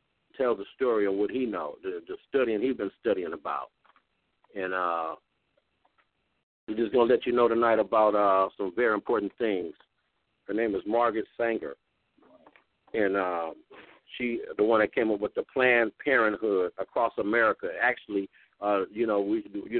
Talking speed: 165 wpm